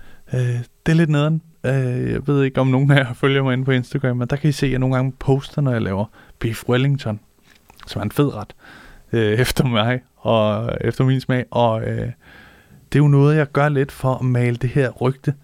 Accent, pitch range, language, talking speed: Danish, 120-155 Hz, English, 235 wpm